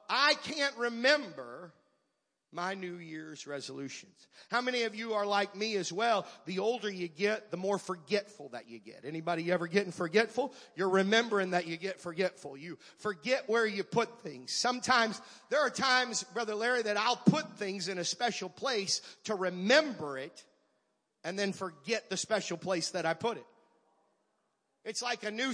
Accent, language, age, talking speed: American, English, 40-59, 170 wpm